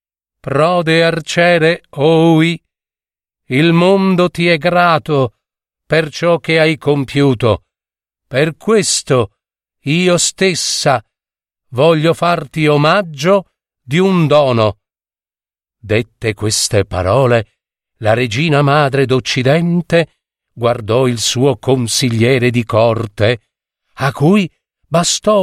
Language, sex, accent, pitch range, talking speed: Italian, male, native, 115-165 Hz, 90 wpm